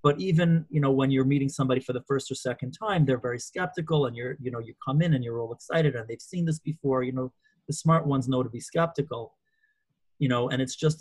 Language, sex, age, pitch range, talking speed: English, male, 30-49, 125-145 Hz, 255 wpm